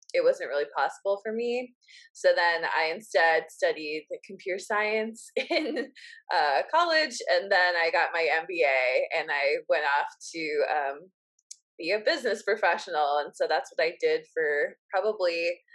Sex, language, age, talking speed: female, English, 20-39, 150 wpm